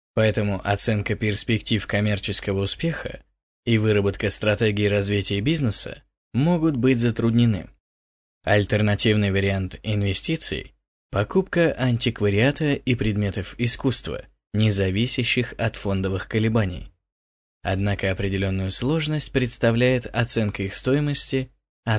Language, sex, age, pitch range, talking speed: Russian, male, 20-39, 100-125 Hz, 95 wpm